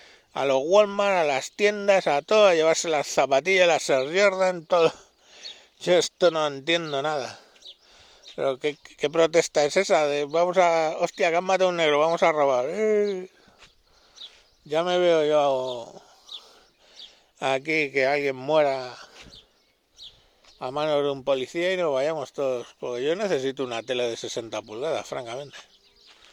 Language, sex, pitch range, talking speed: Spanish, male, 140-180 Hz, 150 wpm